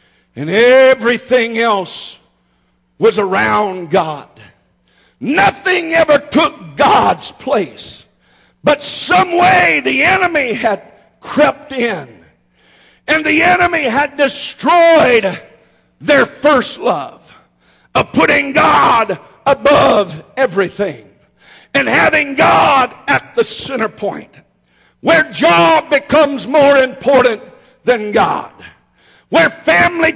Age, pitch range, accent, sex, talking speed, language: 50-69, 240-305 Hz, American, male, 95 wpm, English